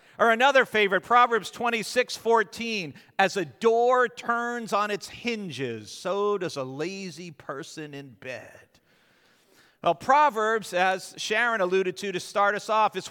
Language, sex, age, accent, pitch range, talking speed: English, male, 50-69, American, 175-235 Hz, 140 wpm